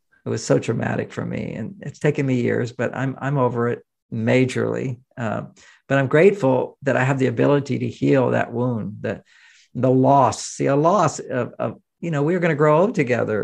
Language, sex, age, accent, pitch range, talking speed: English, male, 50-69, American, 125-145 Hz, 205 wpm